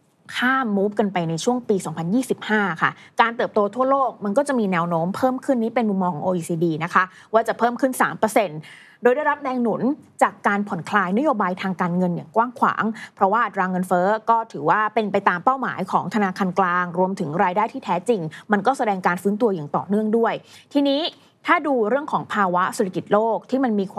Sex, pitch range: female, 185-235 Hz